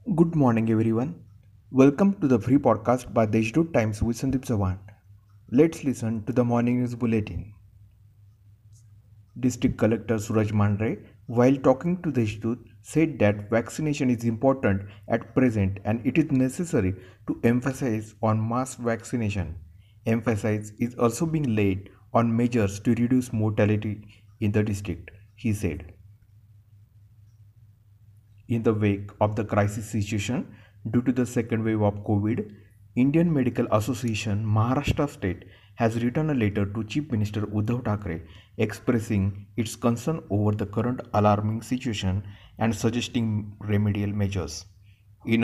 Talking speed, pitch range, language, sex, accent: 135 wpm, 105-120 Hz, Marathi, male, native